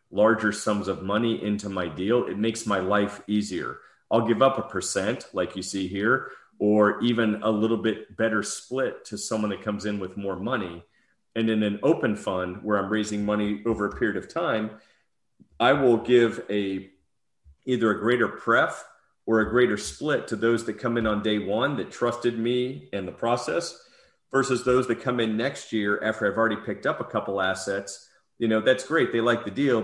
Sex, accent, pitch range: male, American, 100-115 Hz